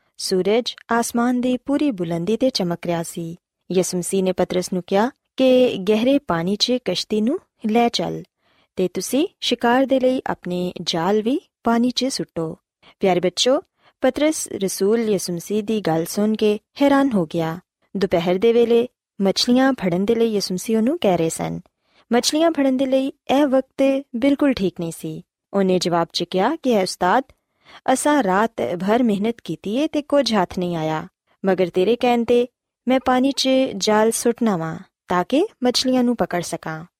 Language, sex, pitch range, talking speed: Punjabi, female, 180-255 Hz, 140 wpm